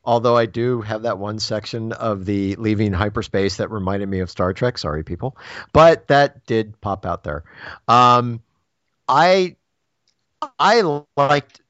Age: 40-59